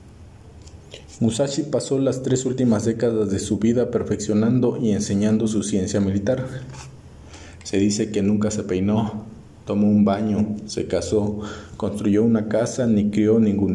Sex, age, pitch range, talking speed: male, 40-59, 100-115 Hz, 140 wpm